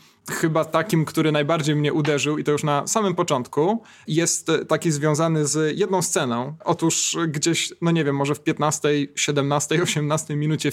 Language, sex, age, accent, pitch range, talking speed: Polish, male, 20-39, native, 145-170 Hz, 160 wpm